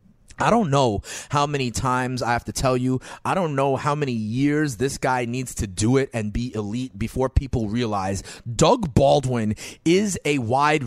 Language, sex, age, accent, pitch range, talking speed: English, male, 30-49, American, 110-155 Hz, 190 wpm